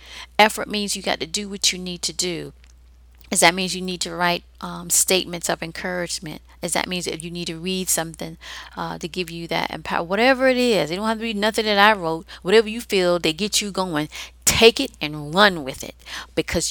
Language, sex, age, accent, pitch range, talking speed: English, female, 40-59, American, 165-215 Hz, 225 wpm